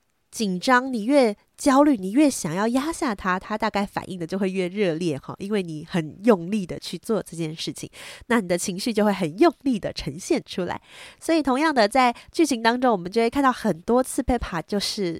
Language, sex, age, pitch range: Chinese, female, 20-39, 185-255 Hz